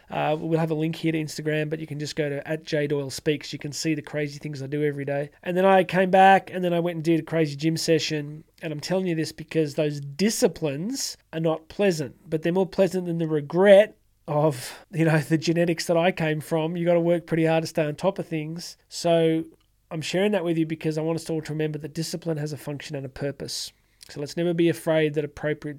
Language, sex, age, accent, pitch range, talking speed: English, male, 20-39, Australian, 150-170 Hz, 250 wpm